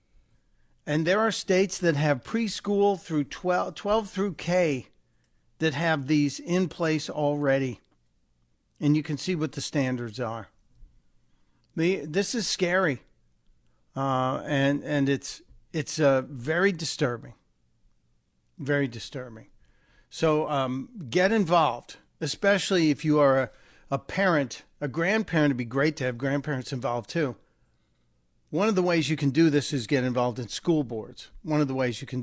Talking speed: 150 wpm